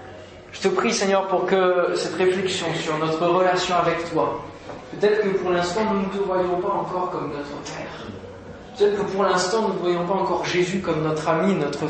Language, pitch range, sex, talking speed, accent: French, 160-190 Hz, male, 200 wpm, French